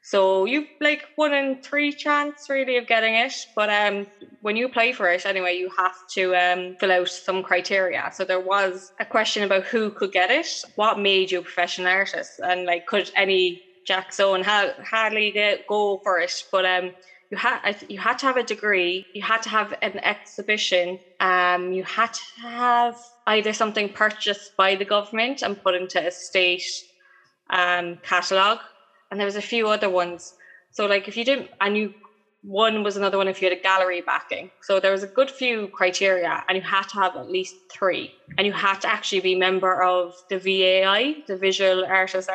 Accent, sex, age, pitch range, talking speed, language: Irish, female, 20-39, 185-215 Hz, 200 wpm, English